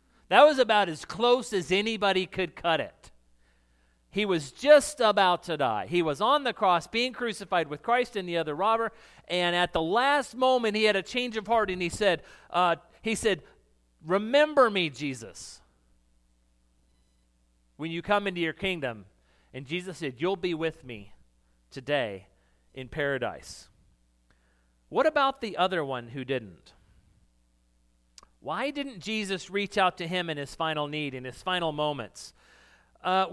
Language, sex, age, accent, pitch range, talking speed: English, male, 40-59, American, 150-215 Hz, 160 wpm